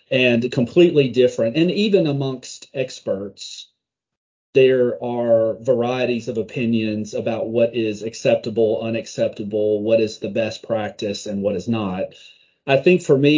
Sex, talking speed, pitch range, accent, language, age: male, 135 wpm, 105-130 Hz, American, English, 40-59